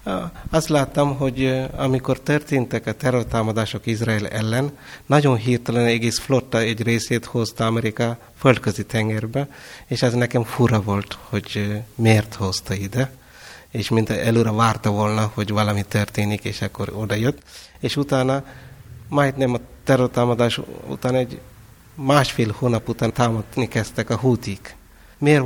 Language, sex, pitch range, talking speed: Hungarian, male, 110-130 Hz, 125 wpm